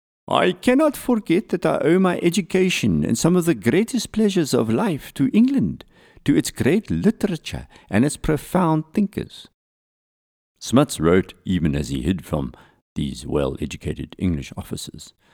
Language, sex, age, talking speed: English, male, 50-69, 145 wpm